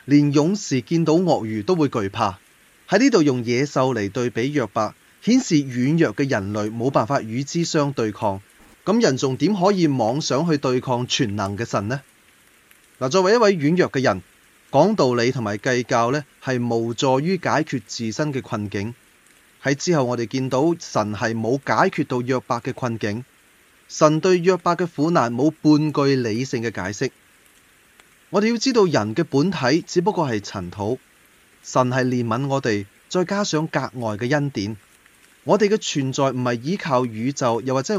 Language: Chinese